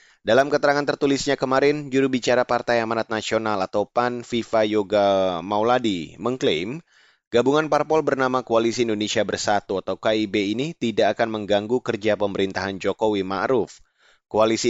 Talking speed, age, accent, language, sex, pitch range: 125 wpm, 30-49, native, Indonesian, male, 110-140 Hz